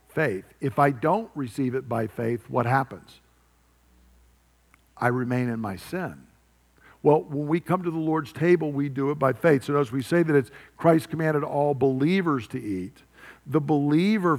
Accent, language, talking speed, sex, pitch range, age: American, English, 175 wpm, male, 120-160 Hz, 50-69